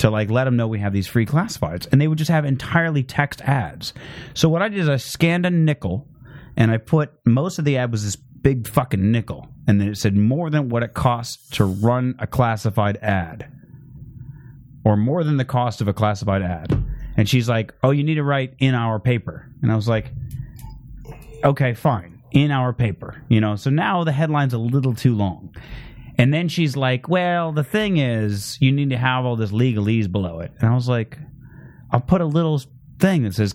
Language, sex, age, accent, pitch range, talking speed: English, male, 30-49, American, 110-145 Hz, 215 wpm